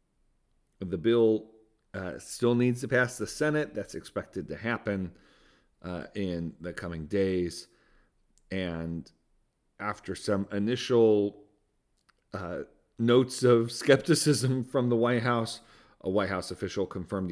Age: 40-59